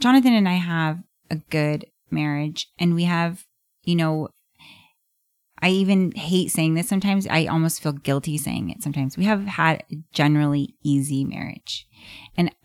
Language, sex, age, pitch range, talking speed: English, female, 20-39, 145-175 Hz, 150 wpm